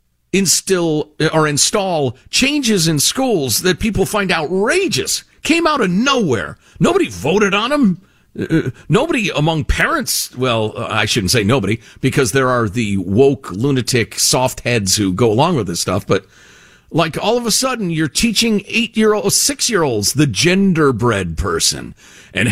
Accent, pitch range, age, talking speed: American, 120-190 Hz, 50-69, 165 wpm